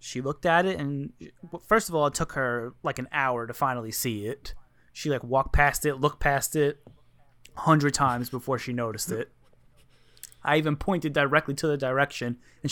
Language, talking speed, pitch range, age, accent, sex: English, 195 wpm, 125-160 Hz, 20-39, American, male